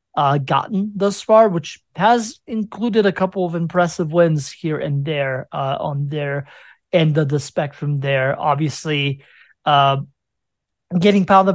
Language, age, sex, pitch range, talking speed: English, 30-49, male, 145-185 Hz, 140 wpm